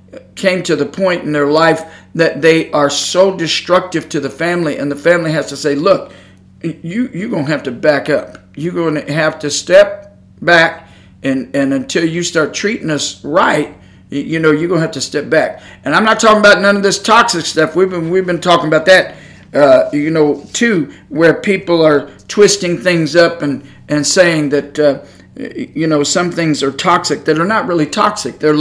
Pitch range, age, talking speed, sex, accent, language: 150-190 Hz, 50-69, 205 wpm, male, American, English